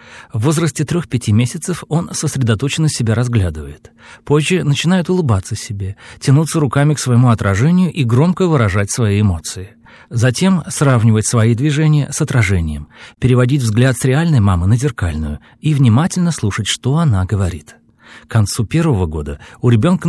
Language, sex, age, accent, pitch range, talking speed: Russian, male, 40-59, native, 100-145 Hz, 140 wpm